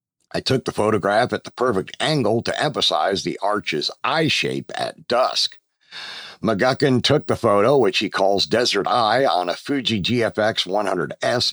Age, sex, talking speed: 50-69, male, 150 wpm